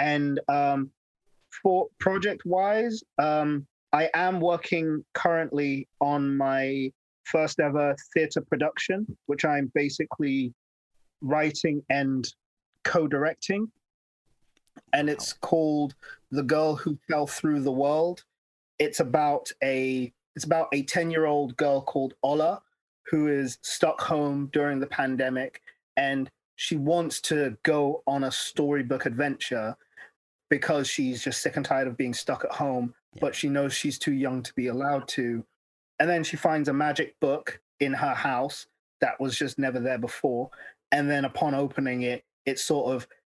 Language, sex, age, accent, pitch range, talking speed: English, male, 30-49, British, 135-160 Hz, 145 wpm